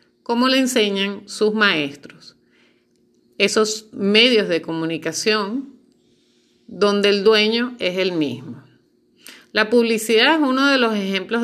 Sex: female